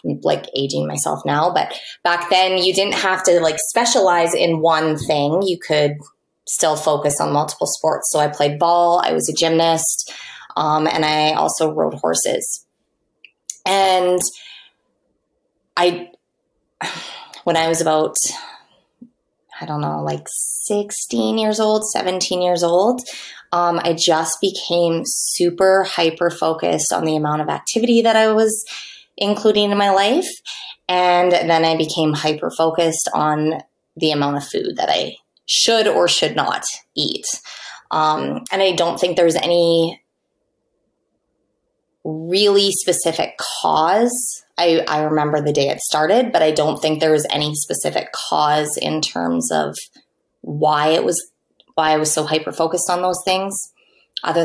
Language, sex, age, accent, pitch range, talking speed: English, female, 20-39, American, 155-185 Hz, 140 wpm